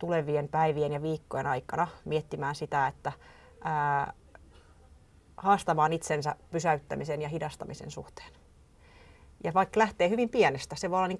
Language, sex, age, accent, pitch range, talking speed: Finnish, female, 30-49, native, 140-175 Hz, 130 wpm